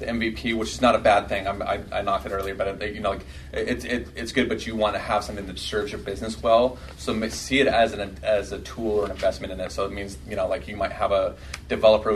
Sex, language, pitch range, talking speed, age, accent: male, English, 95-105 Hz, 285 wpm, 30-49, American